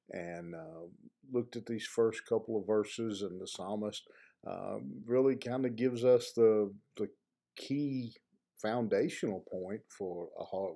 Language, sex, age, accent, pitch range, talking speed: English, male, 50-69, American, 100-130 Hz, 145 wpm